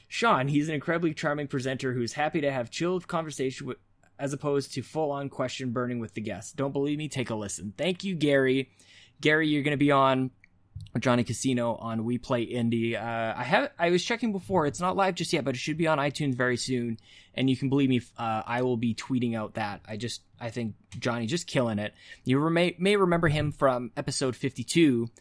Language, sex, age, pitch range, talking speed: English, male, 20-39, 115-150 Hz, 220 wpm